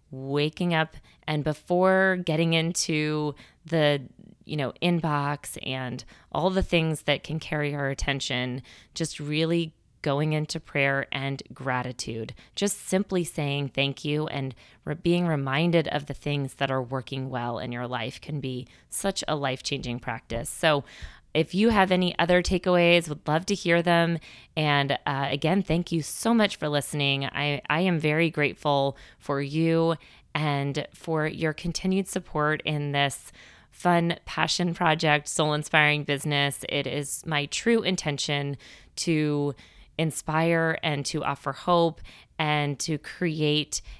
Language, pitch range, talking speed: English, 140-165 Hz, 145 wpm